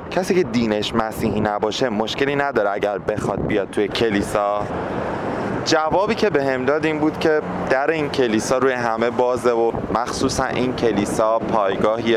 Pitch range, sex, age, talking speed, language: 95-115 Hz, male, 30-49, 155 wpm, English